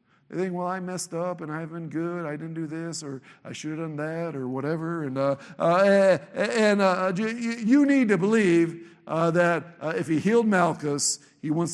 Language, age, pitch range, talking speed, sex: English, 60-79, 180-225 Hz, 205 wpm, male